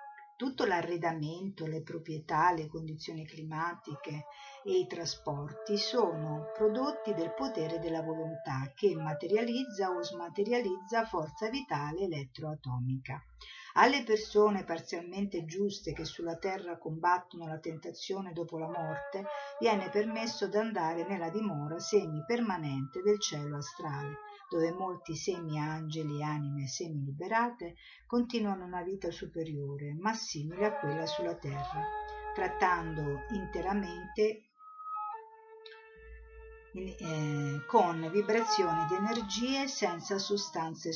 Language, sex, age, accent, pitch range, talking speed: Italian, female, 50-69, native, 155-220 Hz, 105 wpm